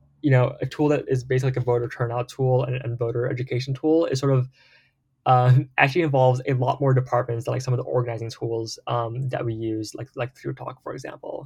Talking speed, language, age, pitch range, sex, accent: 230 wpm, English, 10-29, 115-130 Hz, male, American